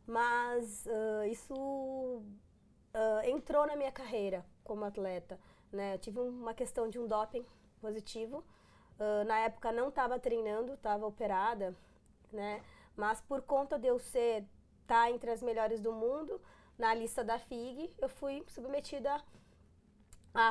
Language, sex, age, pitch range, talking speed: Portuguese, female, 20-39, 215-270 Hz, 145 wpm